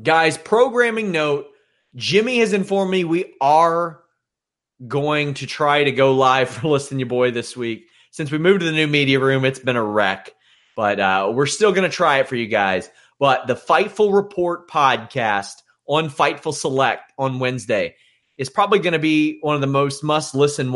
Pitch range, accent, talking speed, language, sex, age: 130-170 Hz, American, 185 wpm, English, male, 30-49